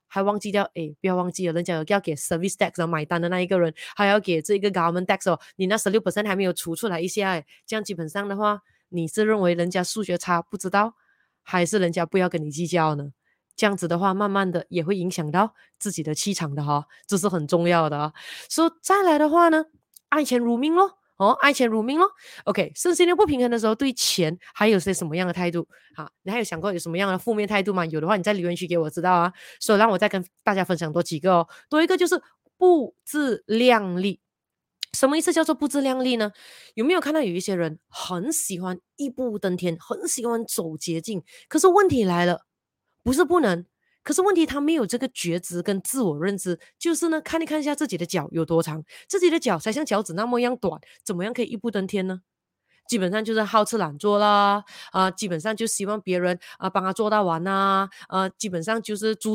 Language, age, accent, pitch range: Chinese, 20-39, Malaysian, 180-235 Hz